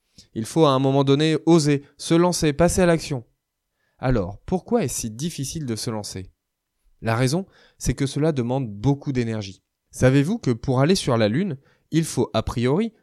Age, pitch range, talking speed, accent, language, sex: 20-39, 120-155 Hz, 180 wpm, French, French, male